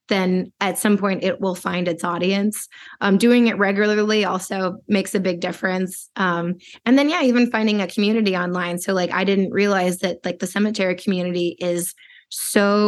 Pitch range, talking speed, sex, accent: 185-210 Hz, 180 wpm, female, American